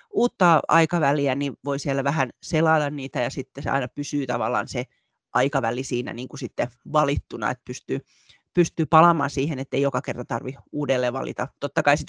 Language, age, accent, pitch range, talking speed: Finnish, 30-49, native, 135-160 Hz, 180 wpm